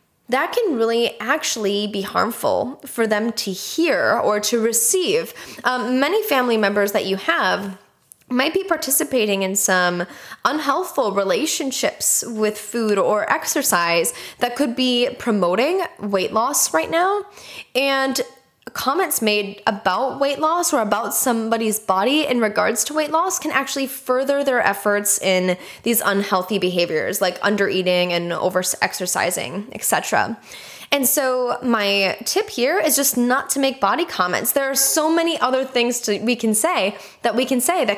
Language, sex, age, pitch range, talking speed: English, female, 10-29, 205-295 Hz, 155 wpm